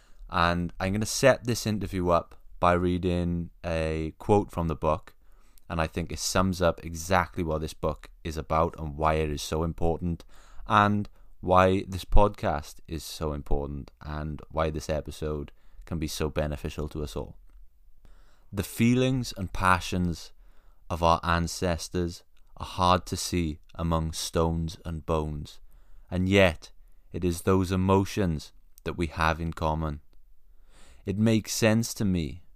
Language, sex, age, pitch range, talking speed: English, male, 20-39, 80-95 Hz, 150 wpm